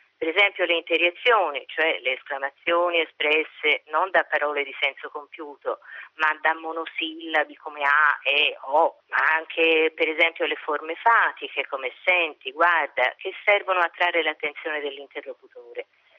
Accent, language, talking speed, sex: native, Italian, 135 wpm, female